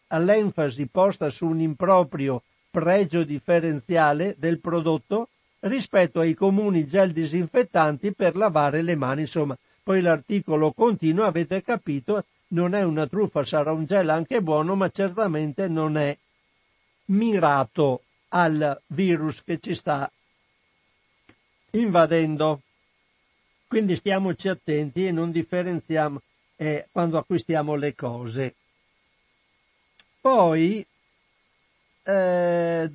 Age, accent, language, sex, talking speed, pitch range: 60-79, native, Italian, male, 105 wpm, 155-190 Hz